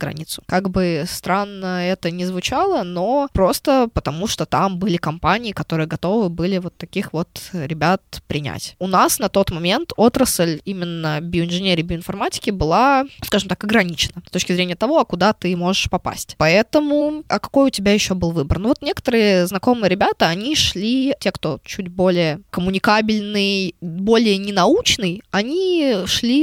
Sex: female